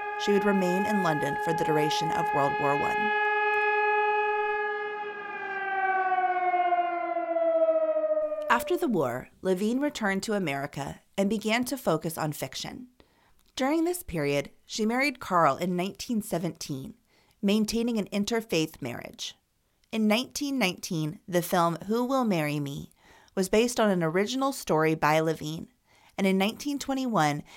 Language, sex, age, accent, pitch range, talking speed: English, female, 30-49, American, 170-255 Hz, 120 wpm